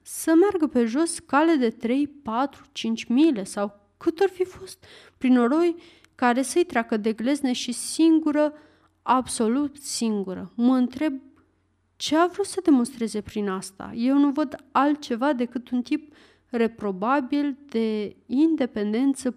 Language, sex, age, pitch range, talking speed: Romanian, female, 30-49, 230-295 Hz, 140 wpm